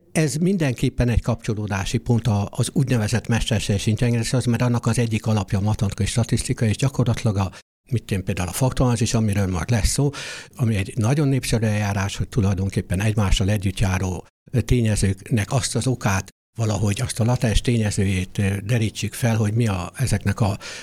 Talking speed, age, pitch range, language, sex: 160 wpm, 60-79, 100-130 Hz, Hungarian, male